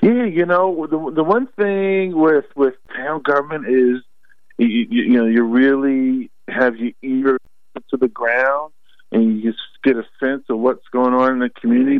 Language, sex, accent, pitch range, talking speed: English, male, American, 115-140 Hz, 185 wpm